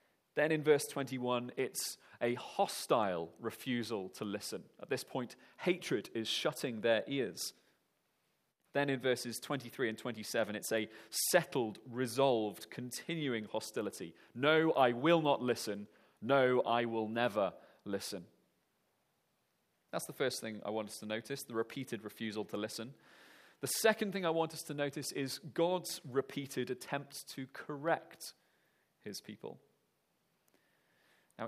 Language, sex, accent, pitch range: English, male, British, 115-155 Hz